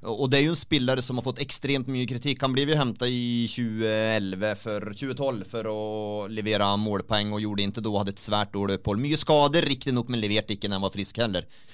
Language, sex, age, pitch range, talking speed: English, male, 30-49, 115-145 Hz, 230 wpm